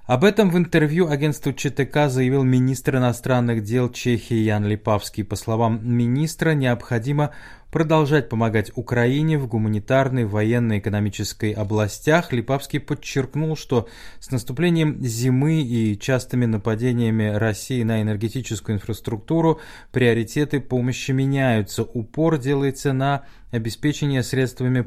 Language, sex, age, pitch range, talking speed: Russian, male, 20-39, 110-135 Hz, 110 wpm